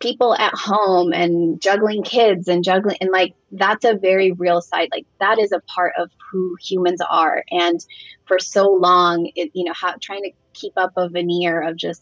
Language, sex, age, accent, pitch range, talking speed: English, female, 20-39, American, 170-190 Hz, 200 wpm